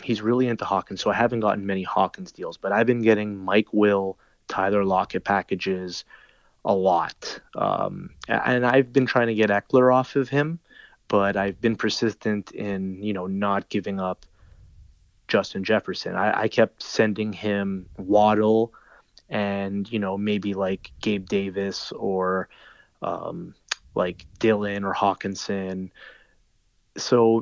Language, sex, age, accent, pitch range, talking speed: English, male, 20-39, American, 95-110 Hz, 140 wpm